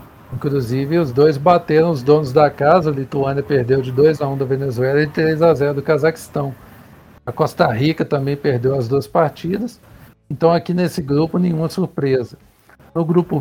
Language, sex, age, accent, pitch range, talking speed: Portuguese, male, 60-79, Brazilian, 135-160 Hz, 155 wpm